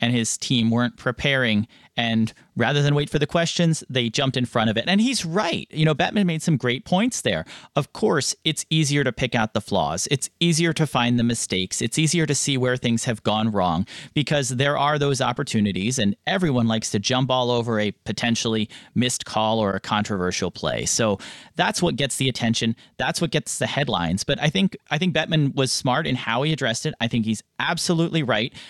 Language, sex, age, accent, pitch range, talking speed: English, male, 30-49, American, 120-155 Hz, 215 wpm